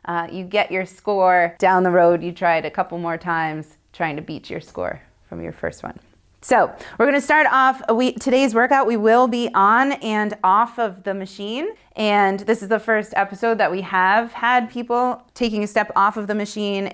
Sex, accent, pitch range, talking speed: female, American, 190-240 Hz, 210 wpm